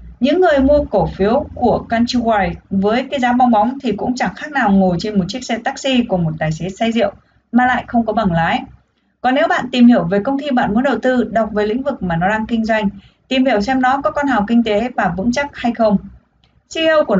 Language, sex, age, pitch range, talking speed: Vietnamese, female, 20-39, 195-255 Hz, 250 wpm